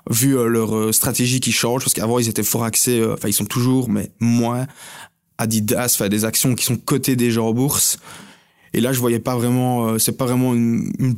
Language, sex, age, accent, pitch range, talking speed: French, male, 20-39, French, 110-125 Hz, 220 wpm